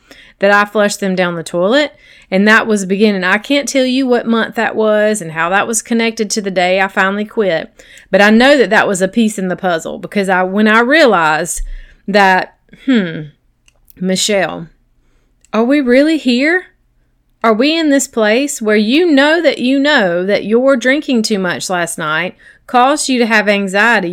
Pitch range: 190-250 Hz